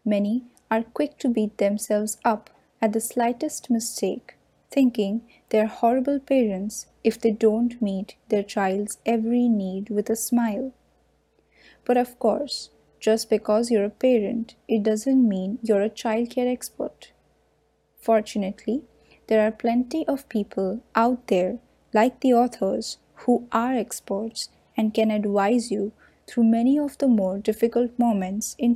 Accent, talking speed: Indian, 140 wpm